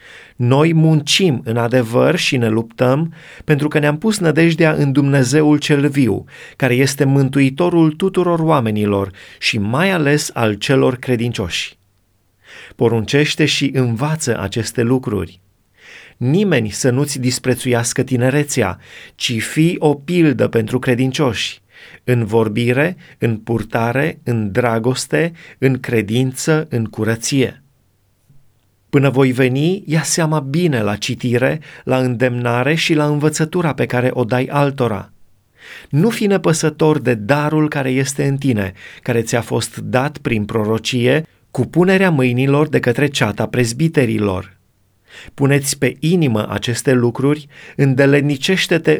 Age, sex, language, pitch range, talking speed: 30-49, male, Romanian, 115-150 Hz, 120 wpm